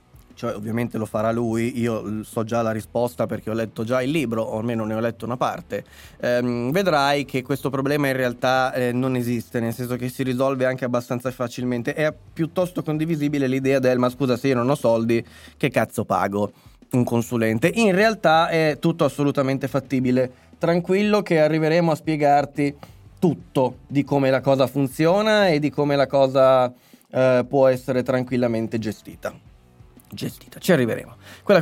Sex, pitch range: male, 120-155 Hz